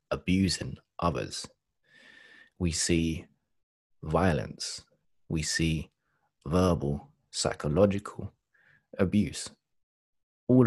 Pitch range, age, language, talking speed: 85-110 Hz, 30-49, English, 60 wpm